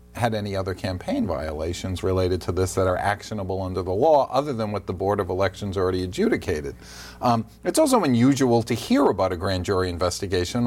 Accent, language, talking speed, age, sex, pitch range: American, English, 190 wpm, 40-59, male, 95-120 Hz